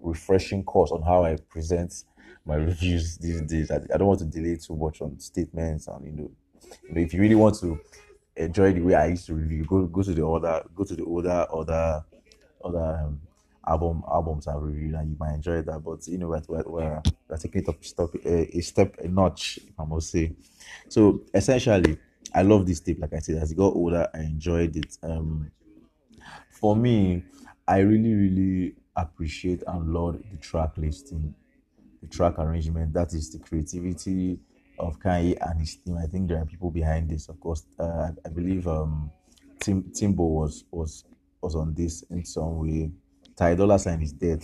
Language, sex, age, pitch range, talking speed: English, male, 20-39, 80-90 Hz, 190 wpm